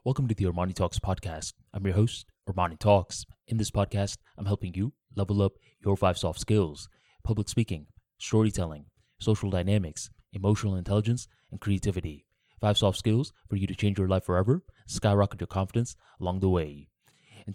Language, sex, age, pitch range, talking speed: English, male, 20-39, 95-120 Hz, 170 wpm